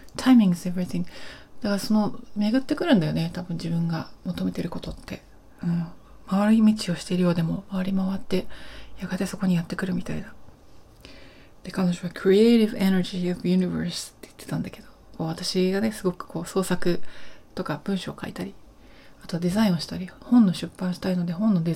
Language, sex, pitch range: Japanese, female, 180-215 Hz